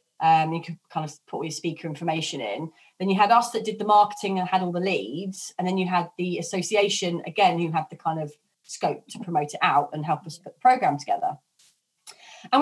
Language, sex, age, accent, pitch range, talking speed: English, female, 30-49, British, 180-235 Hz, 230 wpm